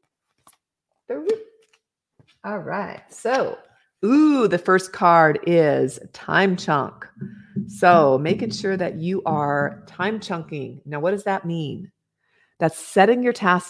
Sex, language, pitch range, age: female, English, 155-200 Hz, 40-59